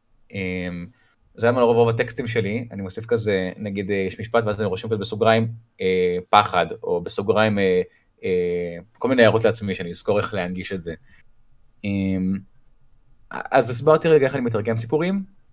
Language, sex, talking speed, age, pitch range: Hebrew, male, 160 wpm, 20-39, 100-120 Hz